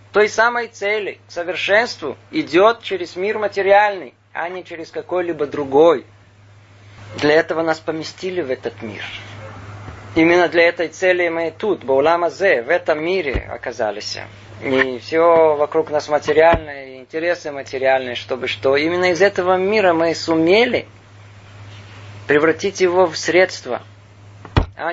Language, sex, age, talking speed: Russian, male, 20-39, 130 wpm